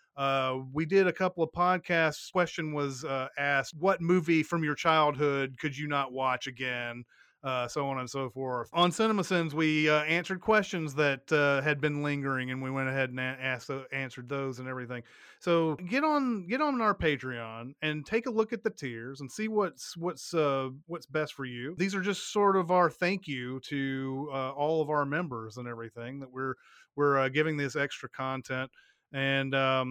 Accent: American